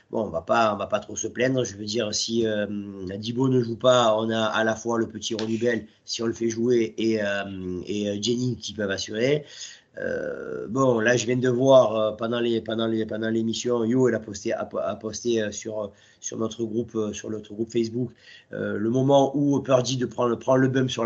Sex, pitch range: male, 110-130 Hz